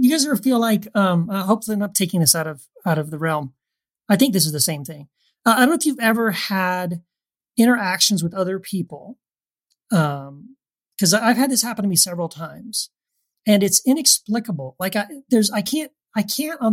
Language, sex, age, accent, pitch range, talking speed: English, male, 40-59, American, 180-225 Hz, 205 wpm